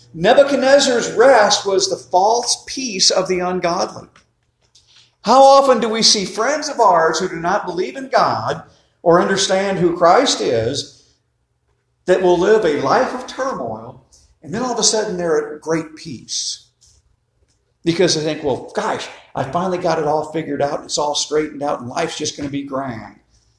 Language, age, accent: English, 50-69, American